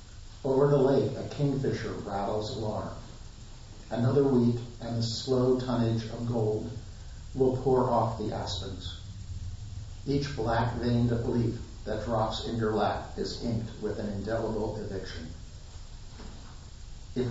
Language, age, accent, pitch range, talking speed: English, 50-69, American, 100-120 Hz, 125 wpm